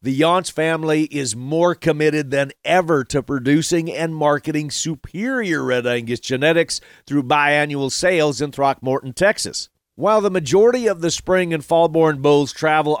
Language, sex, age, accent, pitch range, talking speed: English, male, 40-59, American, 140-175 Hz, 150 wpm